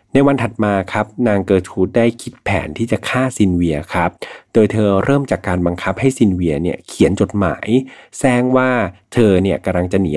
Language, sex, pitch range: Thai, male, 90-115 Hz